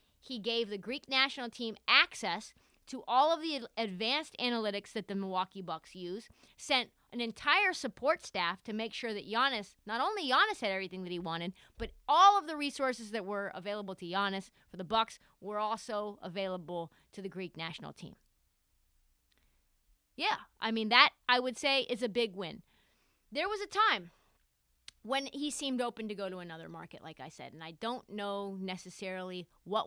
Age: 30-49